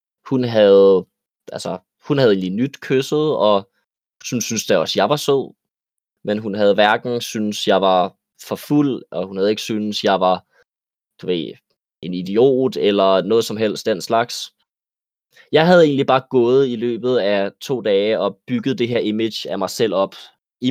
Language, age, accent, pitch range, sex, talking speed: Danish, 20-39, native, 100-130 Hz, male, 180 wpm